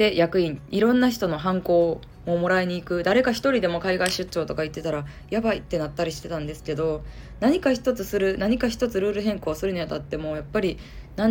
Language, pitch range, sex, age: Japanese, 160-215 Hz, female, 20-39